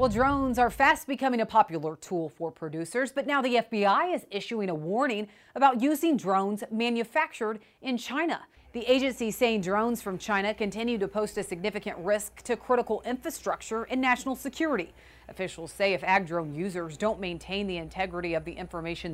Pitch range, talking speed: 185-235 Hz, 170 wpm